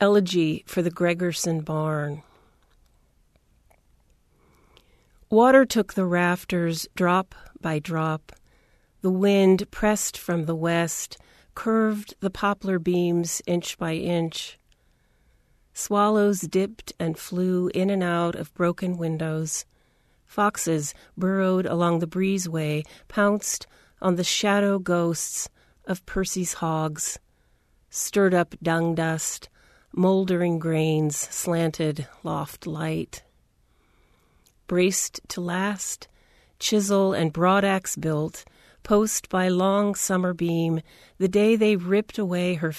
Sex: female